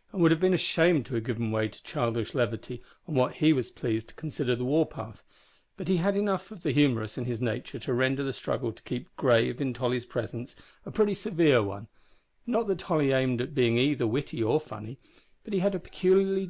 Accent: British